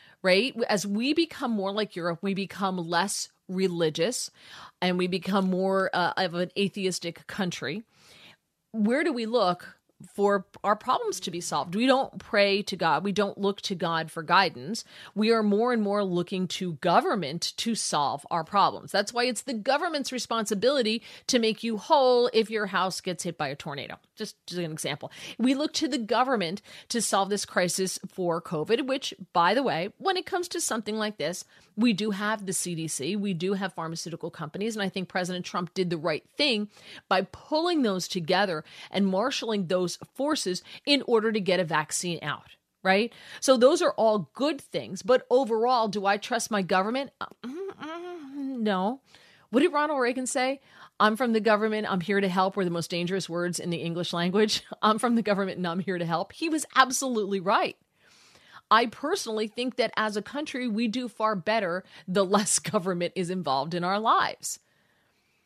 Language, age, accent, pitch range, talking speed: English, 40-59, American, 180-235 Hz, 185 wpm